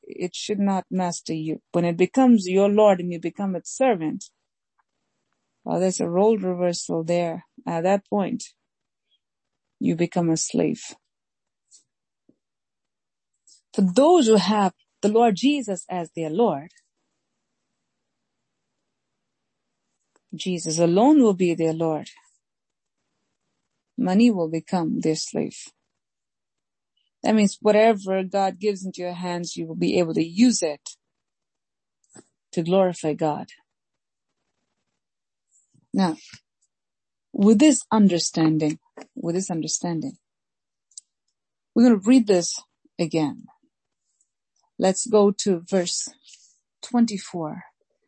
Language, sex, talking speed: English, female, 105 wpm